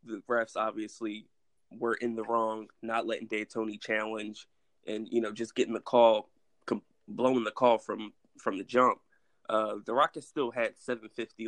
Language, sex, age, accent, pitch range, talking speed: English, male, 20-39, American, 110-120 Hz, 160 wpm